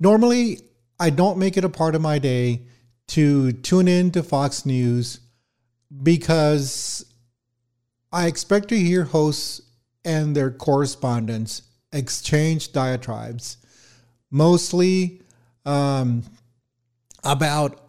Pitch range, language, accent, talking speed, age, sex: 120-160 Hz, English, American, 100 wpm, 50-69, male